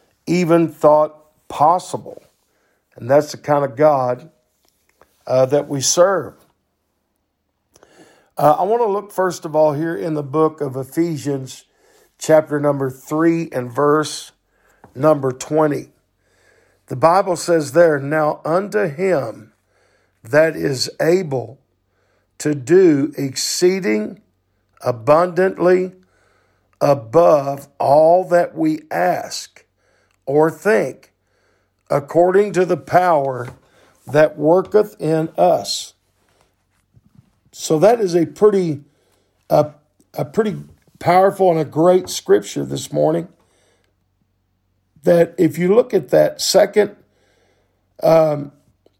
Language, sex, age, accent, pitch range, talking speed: English, male, 50-69, American, 125-175 Hz, 105 wpm